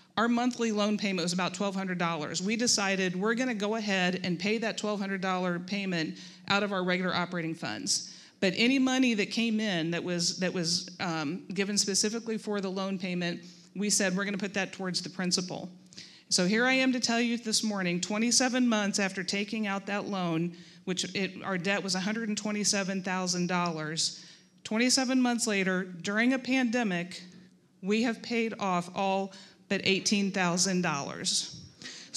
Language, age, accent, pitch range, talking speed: English, 40-59, American, 180-210 Hz, 160 wpm